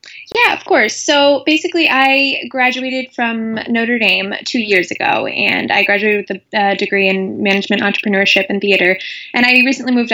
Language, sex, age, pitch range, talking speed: English, female, 20-39, 195-235 Hz, 165 wpm